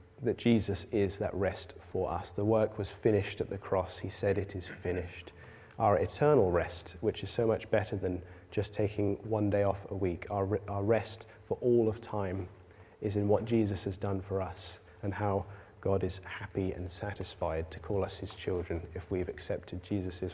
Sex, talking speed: male, 195 wpm